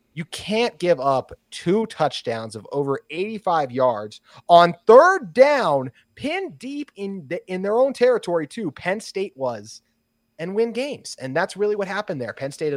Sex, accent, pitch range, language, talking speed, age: male, American, 125-165 Hz, English, 170 wpm, 30-49